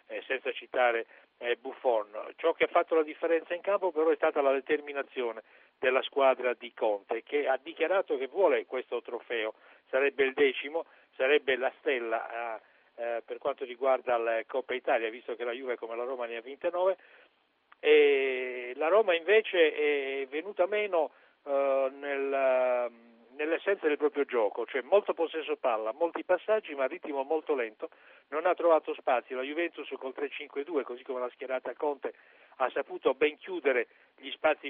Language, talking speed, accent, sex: Italian, 165 wpm, native, male